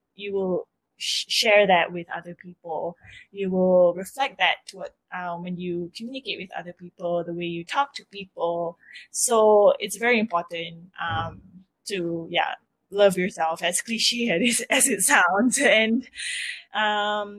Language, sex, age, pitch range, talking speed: English, female, 20-39, 180-210 Hz, 150 wpm